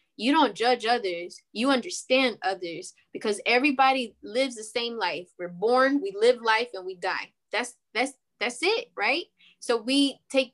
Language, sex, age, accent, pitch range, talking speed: English, female, 20-39, American, 205-265 Hz, 165 wpm